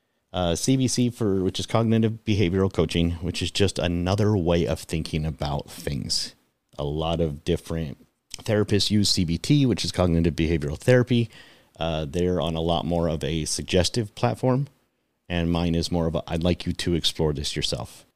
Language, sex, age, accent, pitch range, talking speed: English, male, 30-49, American, 80-95 Hz, 170 wpm